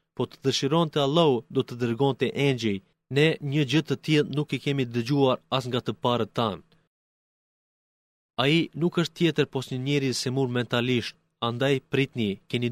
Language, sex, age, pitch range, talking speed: Greek, male, 30-49, 120-145 Hz, 180 wpm